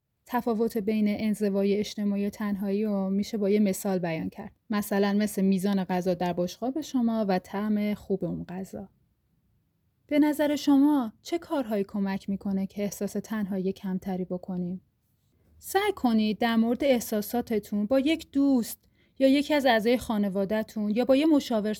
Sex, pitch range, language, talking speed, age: female, 190-230 Hz, Persian, 150 wpm, 30-49